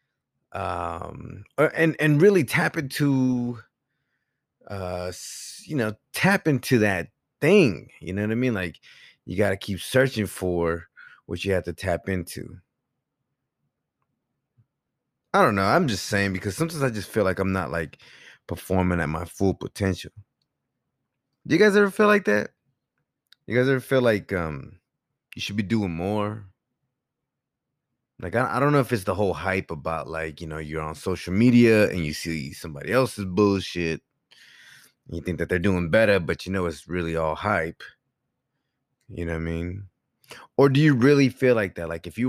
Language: English